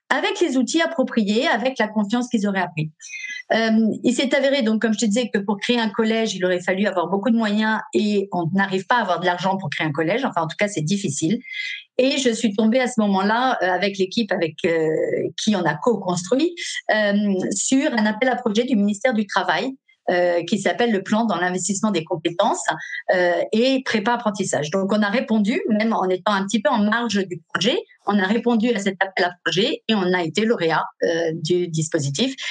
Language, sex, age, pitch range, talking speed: French, female, 50-69, 180-240 Hz, 215 wpm